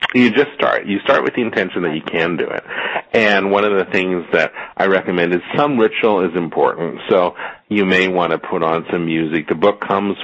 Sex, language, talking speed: male, English, 225 wpm